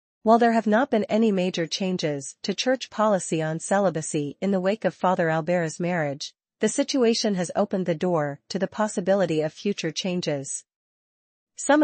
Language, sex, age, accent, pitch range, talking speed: English, female, 40-59, American, 165-205 Hz, 165 wpm